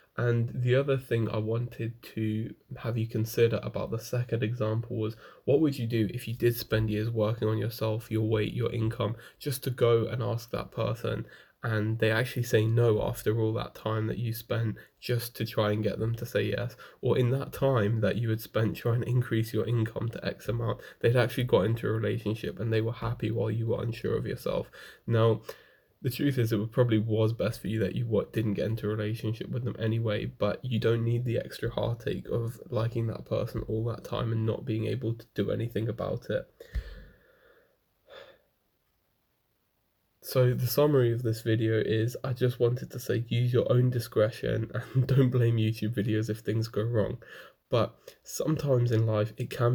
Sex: male